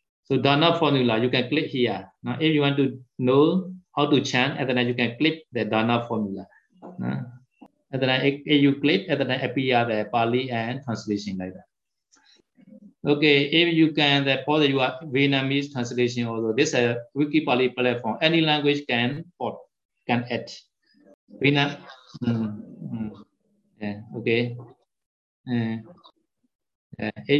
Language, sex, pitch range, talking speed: Vietnamese, male, 120-145 Hz, 145 wpm